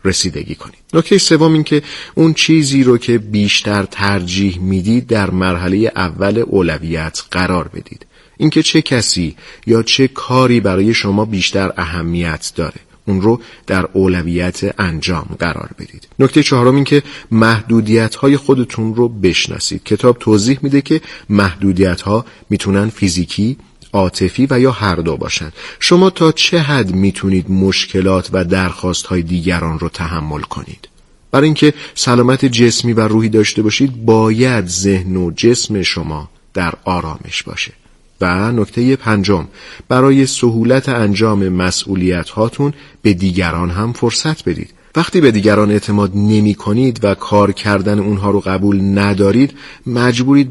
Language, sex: Persian, male